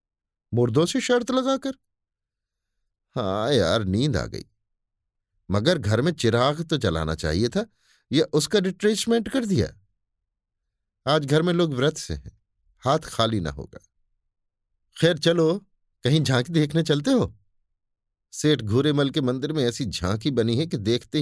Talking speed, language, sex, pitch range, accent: 145 wpm, Hindi, male, 95-150 Hz, native